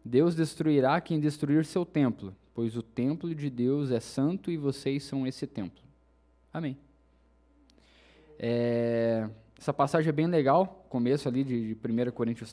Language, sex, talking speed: Portuguese, male, 150 wpm